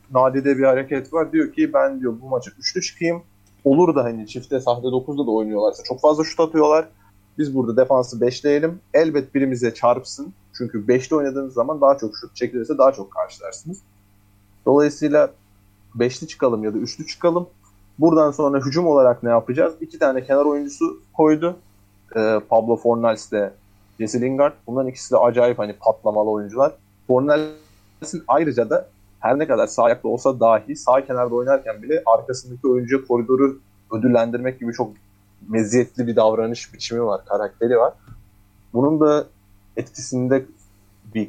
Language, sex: Turkish, male